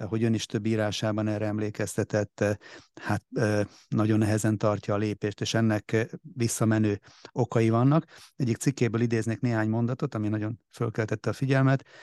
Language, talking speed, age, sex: Hungarian, 140 wpm, 30-49, male